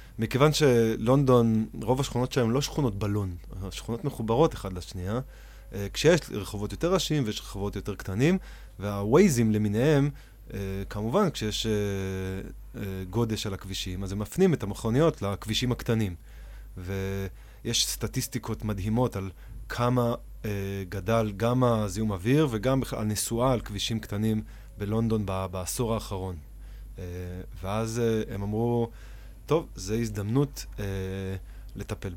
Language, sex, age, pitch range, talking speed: Hebrew, male, 20-39, 100-120 Hz, 110 wpm